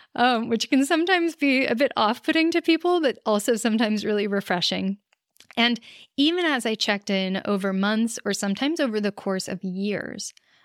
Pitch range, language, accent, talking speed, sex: 195-260 Hz, English, American, 170 wpm, female